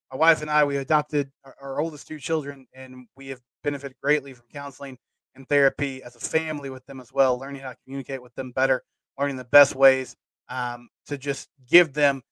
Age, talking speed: 20-39, 210 wpm